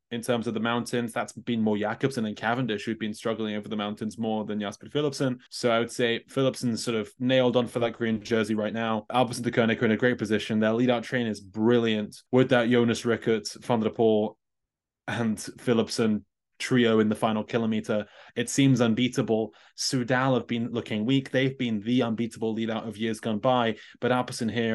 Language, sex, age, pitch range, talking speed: English, male, 20-39, 110-120 Hz, 200 wpm